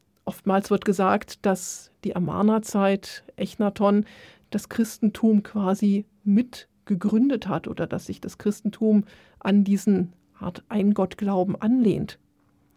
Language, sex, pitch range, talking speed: German, female, 195-225 Hz, 105 wpm